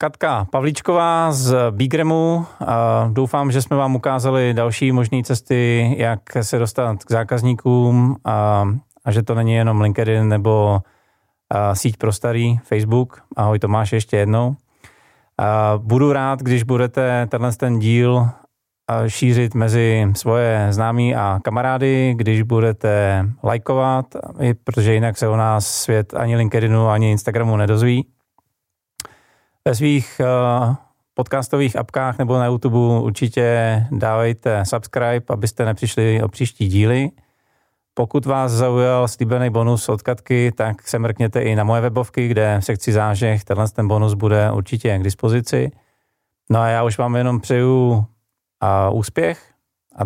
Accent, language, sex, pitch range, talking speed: native, Czech, male, 110-125 Hz, 135 wpm